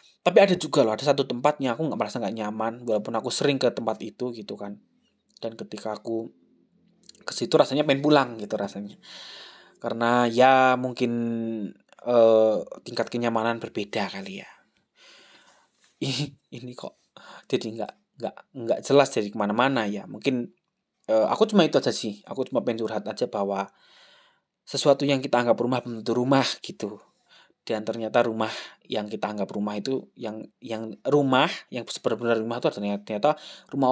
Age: 20-39